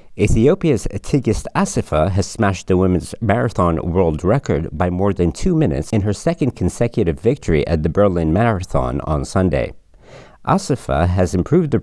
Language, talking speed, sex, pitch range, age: English, 150 wpm, male, 80-115 Hz, 50-69